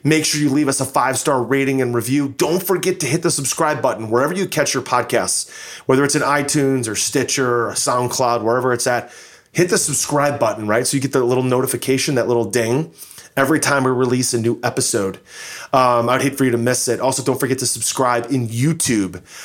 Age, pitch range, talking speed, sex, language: 30-49, 120-145 Hz, 215 wpm, male, English